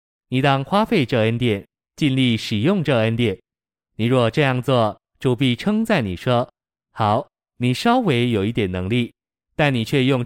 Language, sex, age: Chinese, male, 20-39